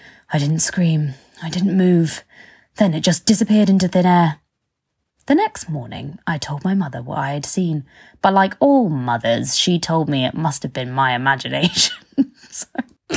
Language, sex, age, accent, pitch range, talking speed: English, female, 20-39, British, 140-190 Hz, 170 wpm